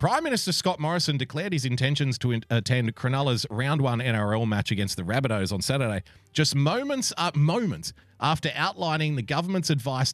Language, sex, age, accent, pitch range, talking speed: English, male, 30-49, Australian, 110-145 Hz, 170 wpm